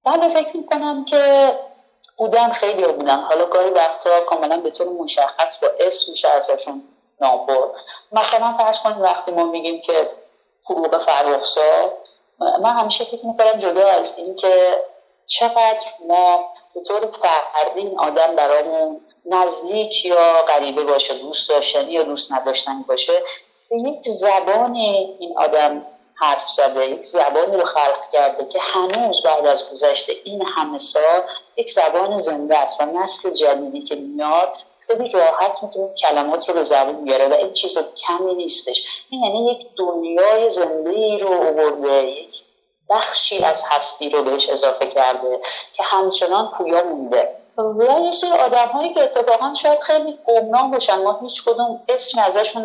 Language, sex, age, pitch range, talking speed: Arabic, female, 30-49, 155-235 Hz, 145 wpm